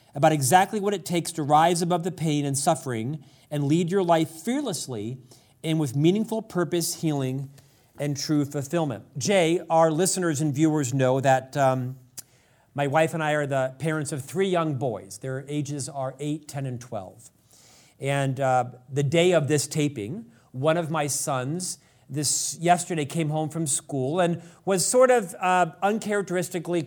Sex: male